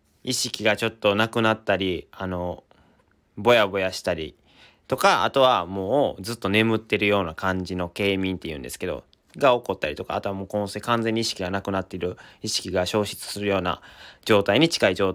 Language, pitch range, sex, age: Japanese, 95-120 Hz, male, 30-49